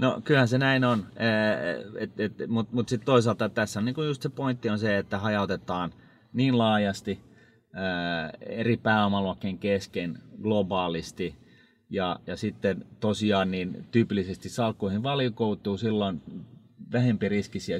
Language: Finnish